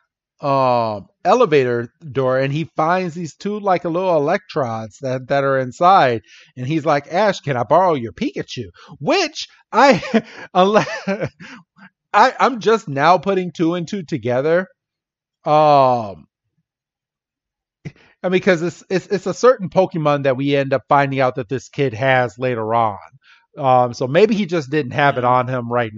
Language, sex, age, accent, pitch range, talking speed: English, male, 30-49, American, 130-175 Hz, 160 wpm